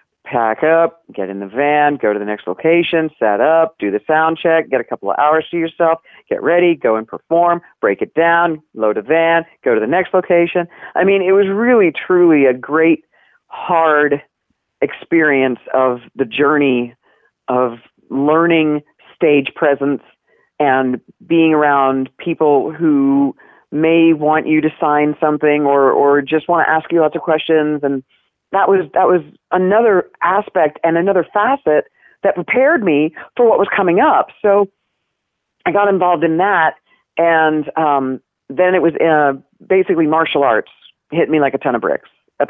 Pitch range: 145-170 Hz